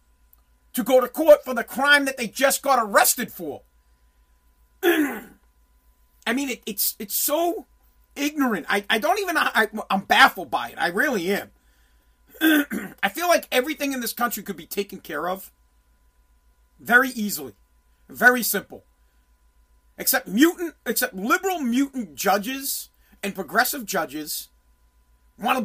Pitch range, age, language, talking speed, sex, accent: 180-265 Hz, 40-59, English, 135 wpm, male, American